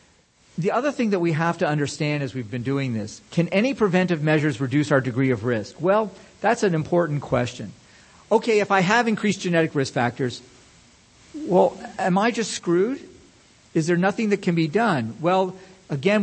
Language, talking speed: English, 180 wpm